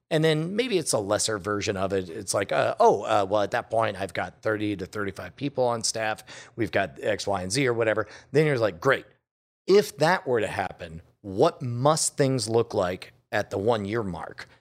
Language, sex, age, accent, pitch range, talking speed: English, male, 40-59, American, 110-135 Hz, 220 wpm